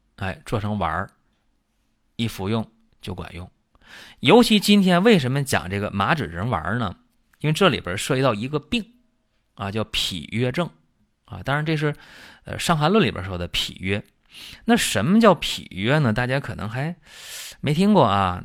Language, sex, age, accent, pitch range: Chinese, male, 30-49, native, 100-160 Hz